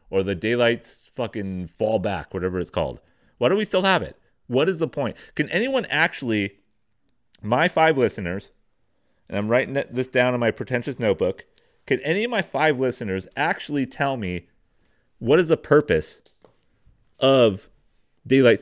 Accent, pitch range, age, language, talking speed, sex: American, 115-175 Hz, 30-49, English, 160 wpm, male